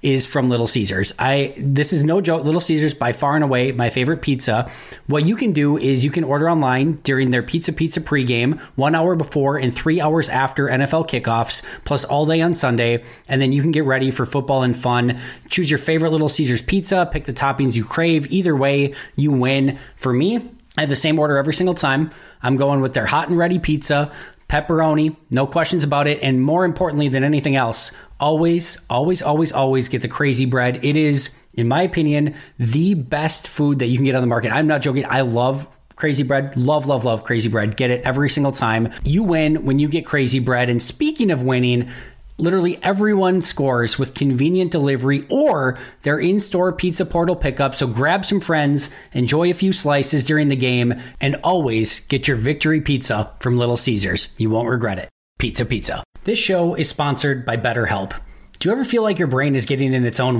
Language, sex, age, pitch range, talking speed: English, male, 20-39, 130-160 Hz, 205 wpm